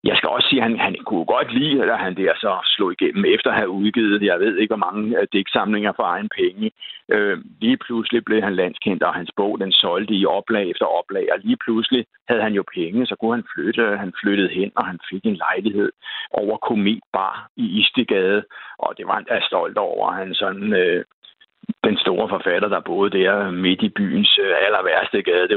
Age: 60-79